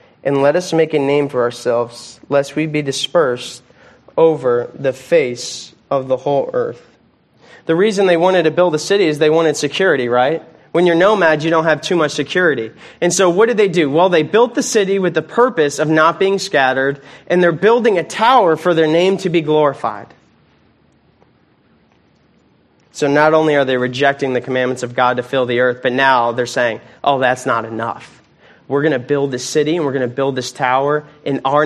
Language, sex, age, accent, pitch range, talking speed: English, male, 20-39, American, 140-190 Hz, 205 wpm